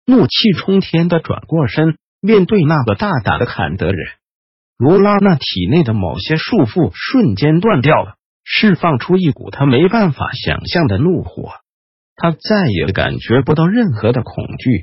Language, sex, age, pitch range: Chinese, male, 50-69, 120-190 Hz